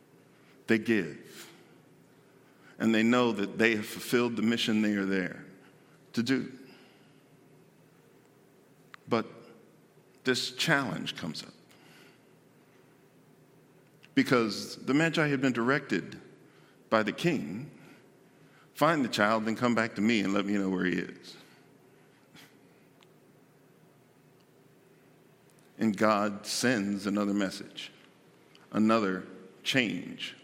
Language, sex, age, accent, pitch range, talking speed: English, male, 50-69, American, 95-115 Hz, 105 wpm